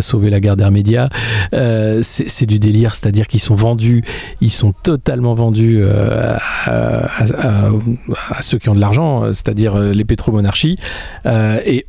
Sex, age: male, 40-59